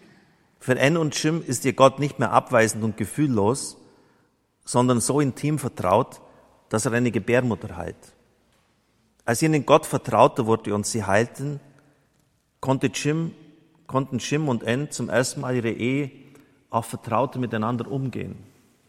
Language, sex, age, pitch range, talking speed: German, male, 50-69, 110-135 Hz, 135 wpm